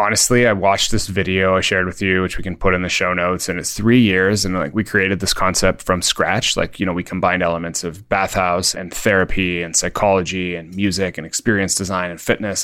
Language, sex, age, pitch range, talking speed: English, male, 20-39, 95-110 Hz, 230 wpm